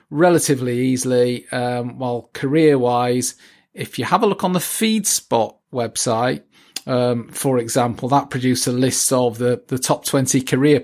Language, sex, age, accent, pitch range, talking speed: English, male, 40-59, British, 115-140 Hz, 165 wpm